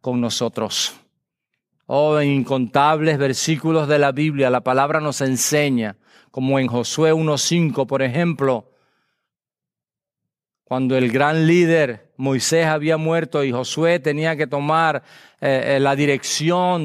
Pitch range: 140-180 Hz